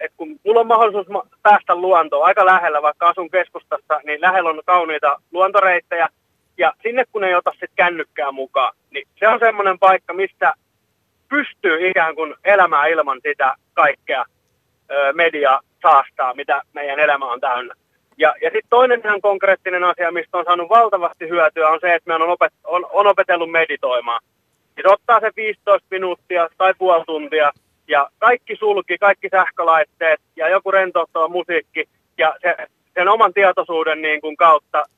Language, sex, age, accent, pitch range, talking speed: Finnish, male, 30-49, native, 160-205 Hz, 160 wpm